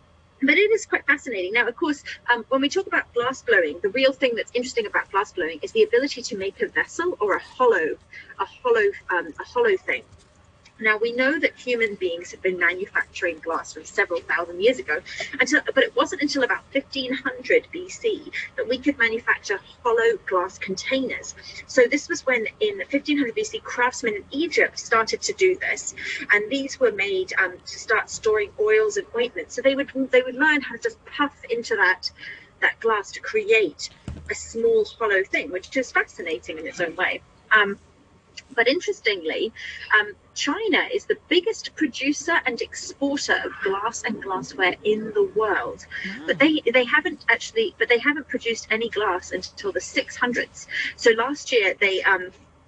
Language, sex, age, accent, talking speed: English, female, 30-49, British, 180 wpm